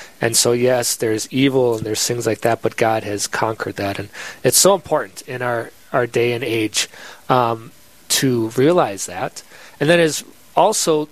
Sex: male